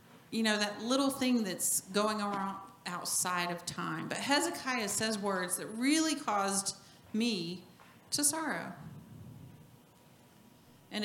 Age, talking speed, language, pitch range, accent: 40-59, 120 wpm, English, 185-230 Hz, American